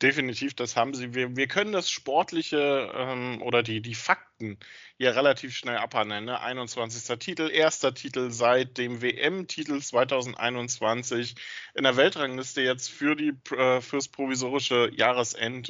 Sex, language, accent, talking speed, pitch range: male, German, German, 140 wpm, 120-140 Hz